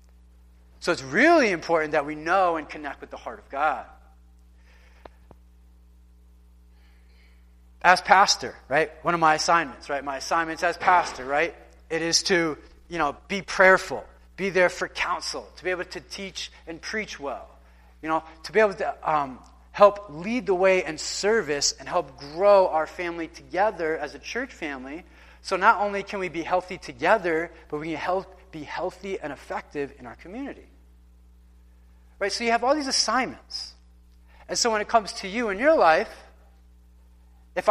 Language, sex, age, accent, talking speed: English, male, 30-49, American, 170 wpm